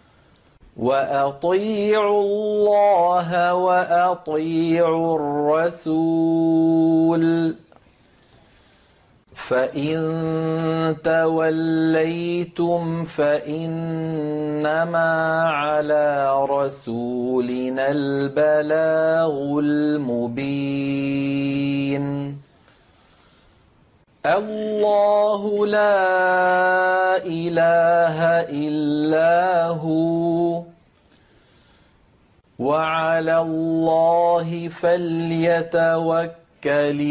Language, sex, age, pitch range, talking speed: Arabic, male, 40-59, 150-170 Hz, 30 wpm